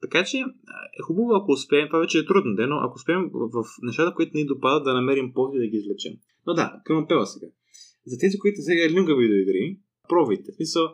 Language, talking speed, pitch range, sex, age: Bulgarian, 215 wpm, 125-190 Hz, male, 20-39